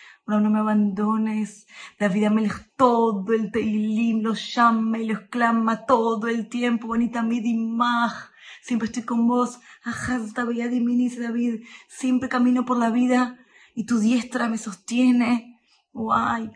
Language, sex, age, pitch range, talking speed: Spanish, female, 20-39, 185-235 Hz, 150 wpm